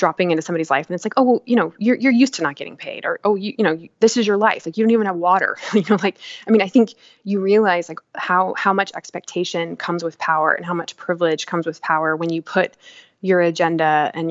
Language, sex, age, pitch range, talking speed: English, female, 20-39, 165-190 Hz, 270 wpm